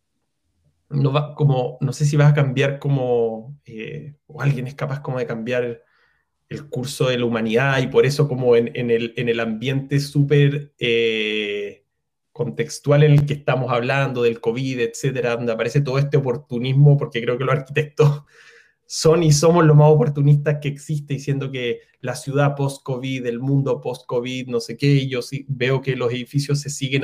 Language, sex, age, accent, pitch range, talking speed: Spanish, male, 20-39, Argentinian, 125-150 Hz, 180 wpm